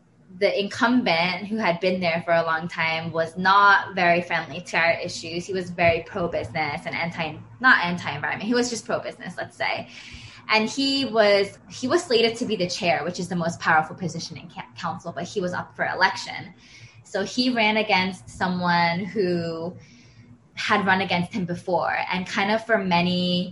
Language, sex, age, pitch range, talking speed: English, female, 20-39, 165-205 Hz, 180 wpm